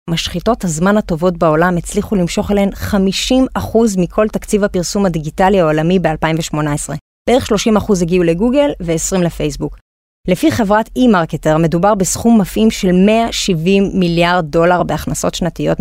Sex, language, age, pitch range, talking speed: female, Hebrew, 30-49, 170-240 Hz, 120 wpm